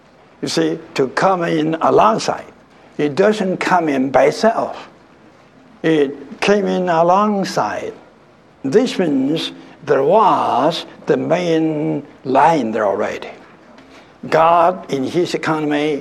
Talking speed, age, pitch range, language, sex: 110 wpm, 60-79, 150-195 Hz, English, male